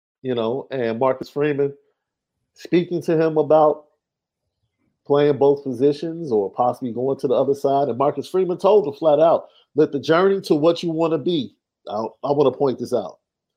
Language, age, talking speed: English, 50-69, 185 wpm